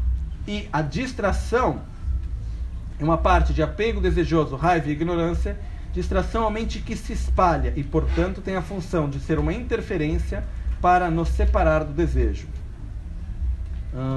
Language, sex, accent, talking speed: Italian, male, Brazilian, 140 wpm